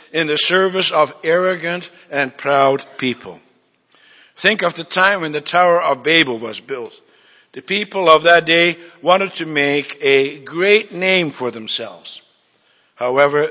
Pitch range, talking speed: 140-190 Hz, 145 wpm